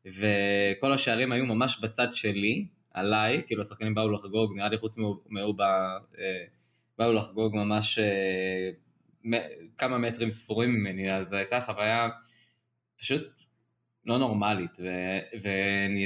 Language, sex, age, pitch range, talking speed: Hebrew, male, 20-39, 100-125 Hz, 120 wpm